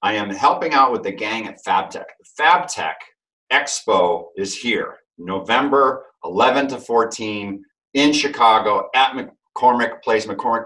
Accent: American